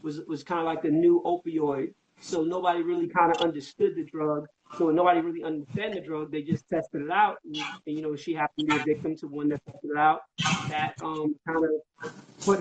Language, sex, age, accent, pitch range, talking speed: English, male, 30-49, American, 155-180 Hz, 230 wpm